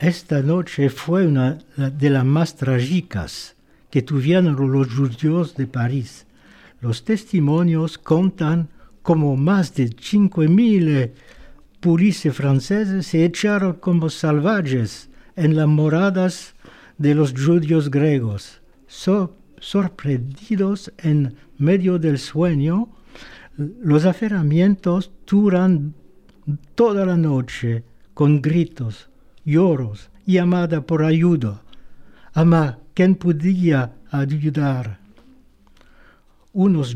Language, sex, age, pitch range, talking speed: French, male, 60-79, 140-185 Hz, 95 wpm